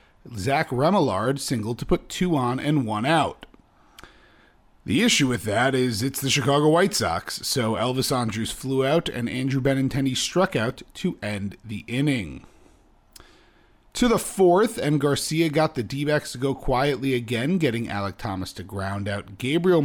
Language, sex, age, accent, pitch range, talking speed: English, male, 40-59, American, 110-145 Hz, 160 wpm